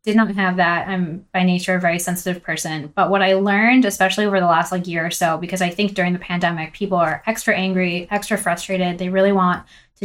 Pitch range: 175-210 Hz